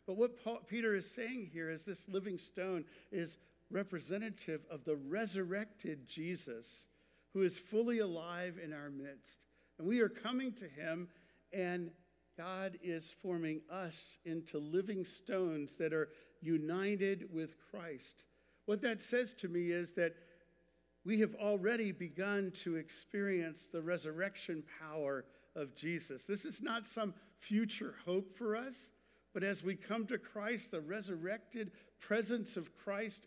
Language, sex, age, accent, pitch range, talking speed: English, male, 50-69, American, 160-210 Hz, 145 wpm